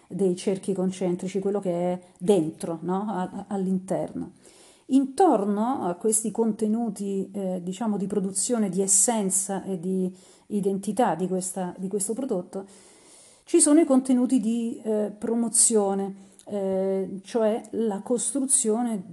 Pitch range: 190-235 Hz